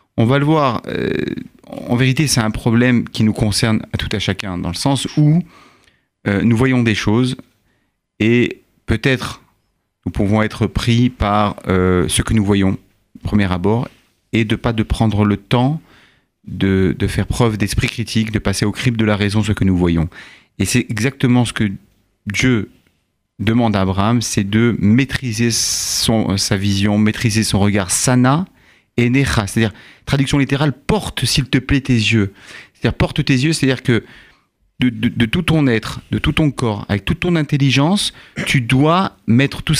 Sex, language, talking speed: male, French, 175 wpm